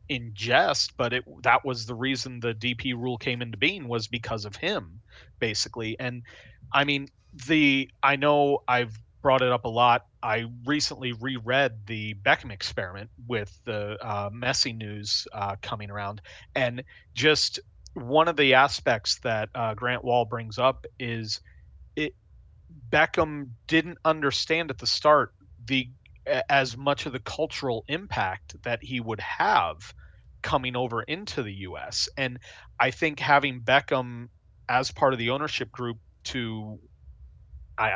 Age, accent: 30-49, American